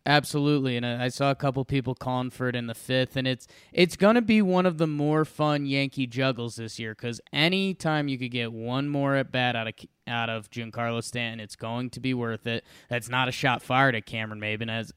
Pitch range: 120-145 Hz